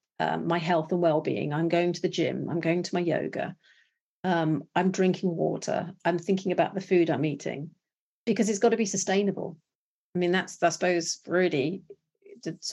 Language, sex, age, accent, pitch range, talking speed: English, female, 40-59, British, 170-195 Hz, 190 wpm